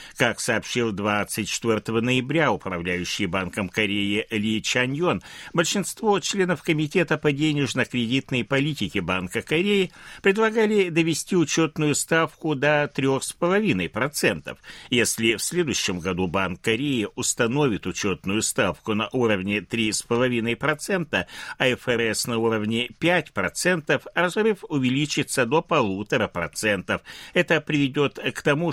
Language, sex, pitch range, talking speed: Russian, male, 105-160 Hz, 100 wpm